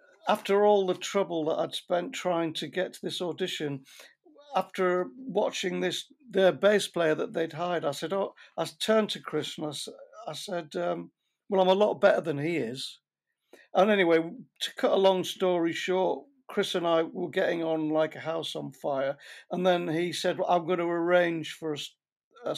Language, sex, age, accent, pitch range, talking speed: English, male, 50-69, British, 155-190 Hz, 195 wpm